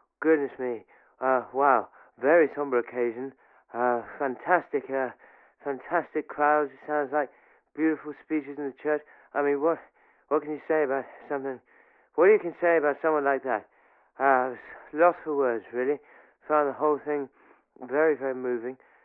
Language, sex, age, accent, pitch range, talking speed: English, male, 30-49, British, 135-160 Hz, 165 wpm